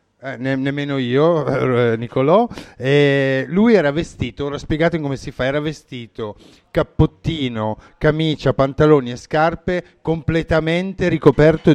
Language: Italian